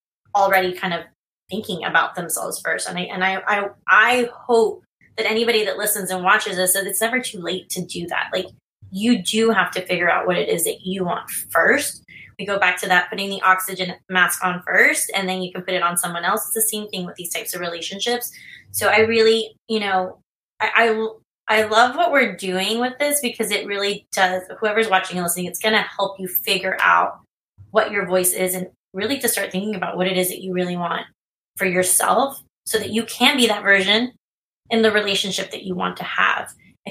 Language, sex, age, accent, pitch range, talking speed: English, female, 20-39, American, 185-225 Hz, 220 wpm